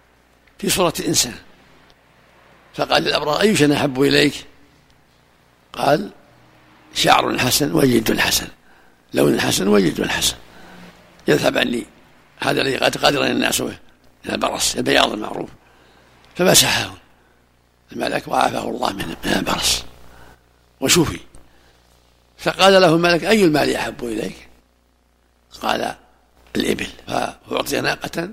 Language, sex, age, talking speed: Arabic, male, 60-79, 95 wpm